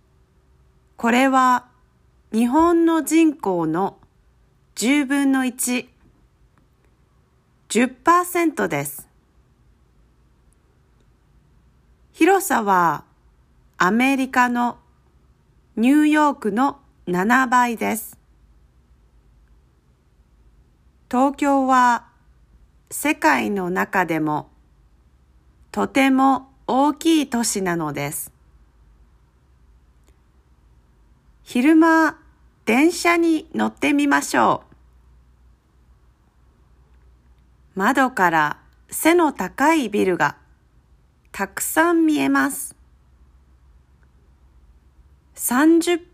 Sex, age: female, 40-59